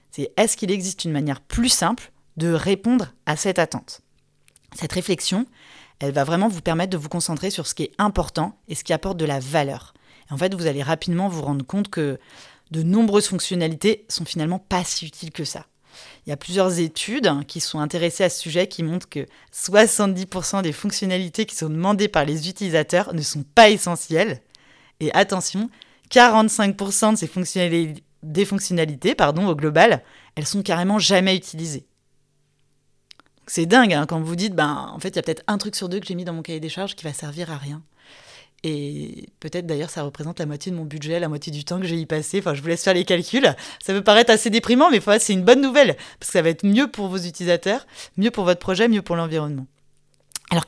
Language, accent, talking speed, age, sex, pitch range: French, French, 215 wpm, 30-49, female, 155-200 Hz